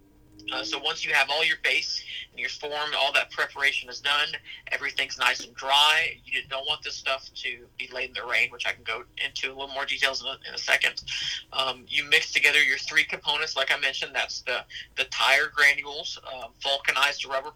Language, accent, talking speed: English, American, 215 wpm